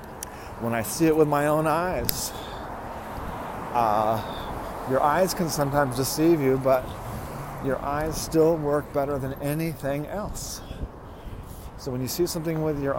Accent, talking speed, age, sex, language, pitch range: American, 145 wpm, 40-59, male, English, 90-145 Hz